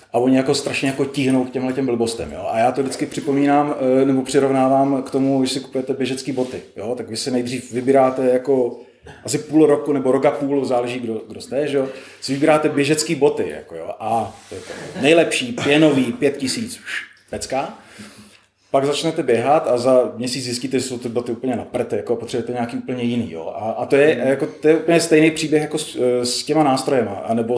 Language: Czech